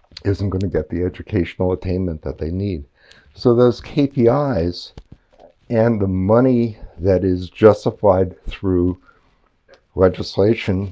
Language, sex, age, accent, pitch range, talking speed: English, male, 60-79, American, 85-110 Hz, 115 wpm